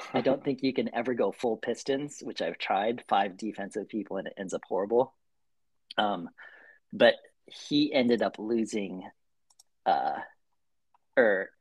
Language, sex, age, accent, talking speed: English, male, 40-59, American, 150 wpm